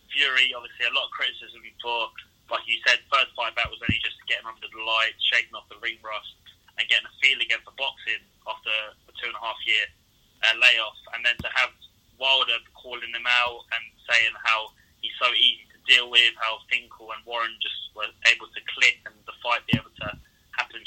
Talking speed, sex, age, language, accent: 200 wpm, male, 20-39, English, British